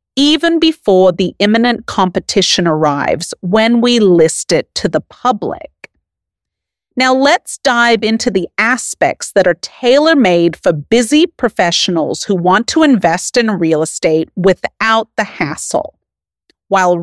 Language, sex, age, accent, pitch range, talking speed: English, female, 40-59, American, 170-245 Hz, 125 wpm